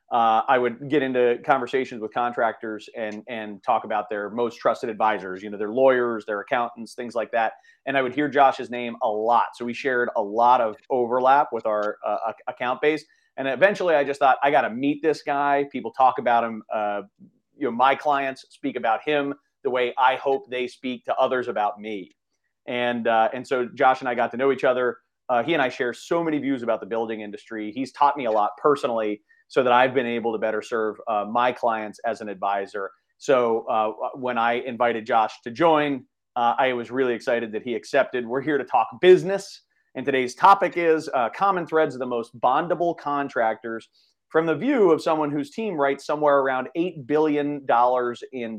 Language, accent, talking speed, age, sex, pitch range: English, American, 205 wpm, 30-49, male, 115-145 Hz